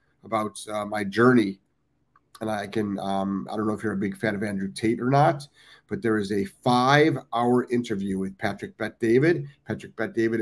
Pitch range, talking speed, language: 110-130 Hz, 200 wpm, English